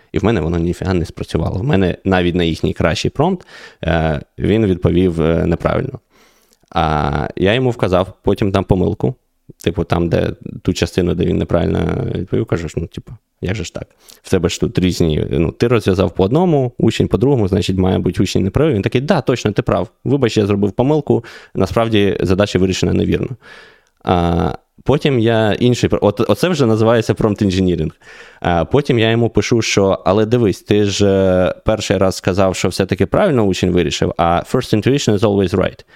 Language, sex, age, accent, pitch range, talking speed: Ukrainian, male, 20-39, native, 90-110 Hz, 175 wpm